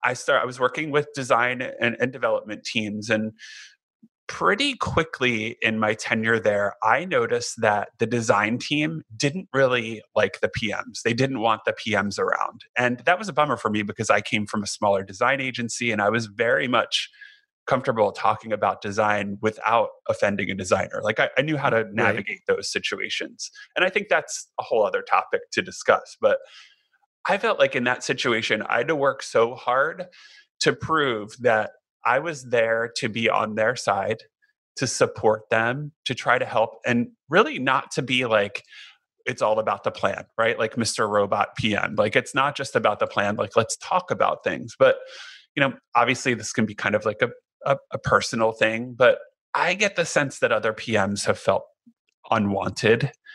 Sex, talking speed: male, 190 wpm